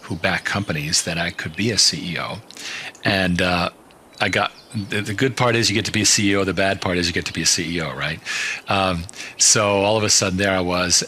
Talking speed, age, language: 240 wpm, 40-59, English